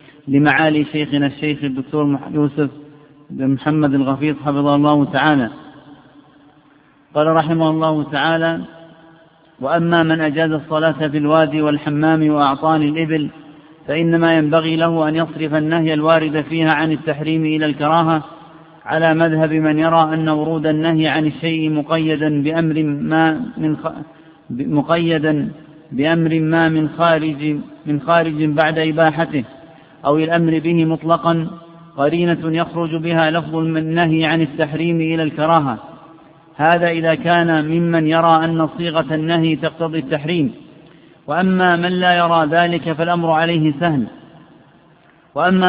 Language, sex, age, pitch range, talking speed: Arabic, male, 50-69, 155-165 Hz, 120 wpm